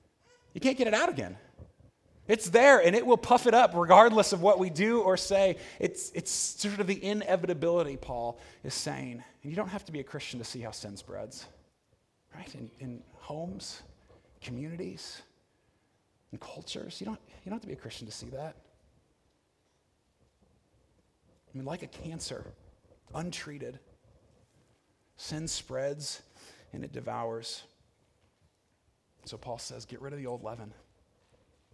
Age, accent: 30-49, American